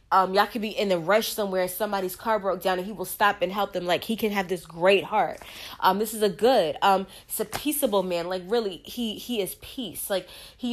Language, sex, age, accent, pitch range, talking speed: English, female, 20-39, American, 180-210 Hz, 250 wpm